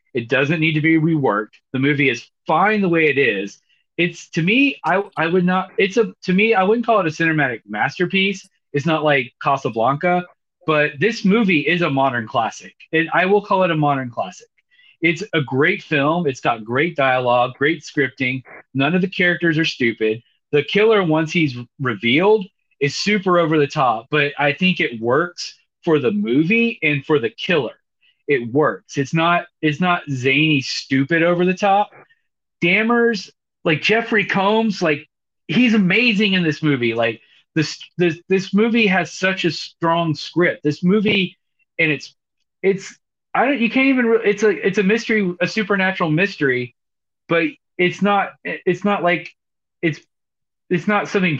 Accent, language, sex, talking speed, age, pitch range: American, English, male, 175 wpm, 30-49, 145-195 Hz